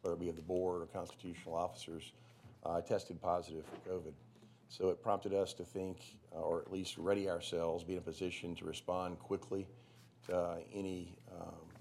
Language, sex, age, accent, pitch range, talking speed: English, male, 50-69, American, 85-100 Hz, 175 wpm